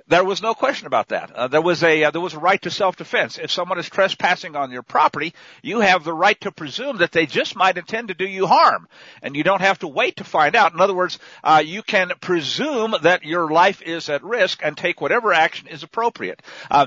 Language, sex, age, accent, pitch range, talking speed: English, male, 50-69, American, 160-210 Hz, 240 wpm